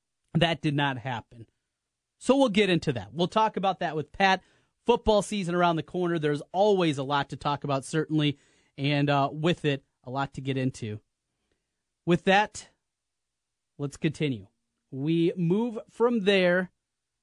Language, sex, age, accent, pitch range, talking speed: English, male, 30-49, American, 135-195 Hz, 155 wpm